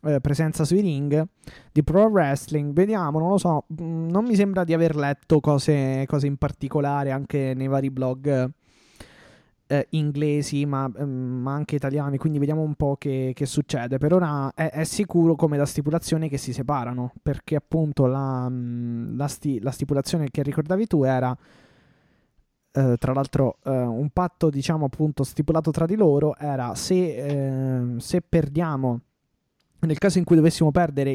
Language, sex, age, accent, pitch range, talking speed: Italian, male, 20-39, native, 135-155 Hz, 155 wpm